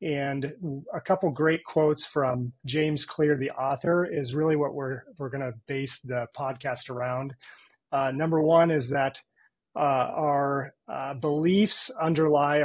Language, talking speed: English, 140 wpm